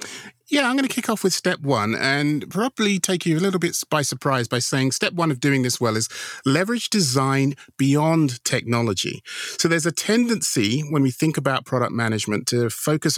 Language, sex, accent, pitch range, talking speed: English, male, British, 120-150 Hz, 195 wpm